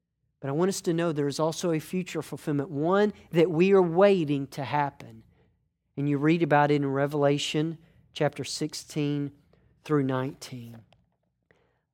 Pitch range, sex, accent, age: 145-190 Hz, male, American, 40-59